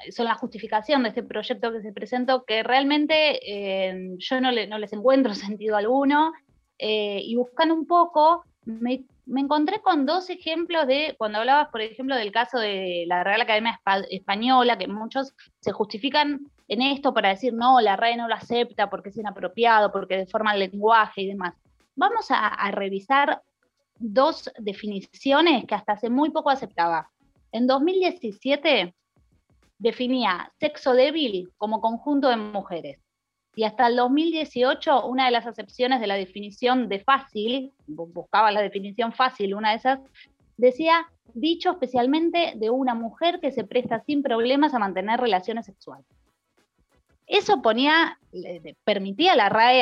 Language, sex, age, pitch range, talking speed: Spanish, female, 20-39, 210-275 Hz, 155 wpm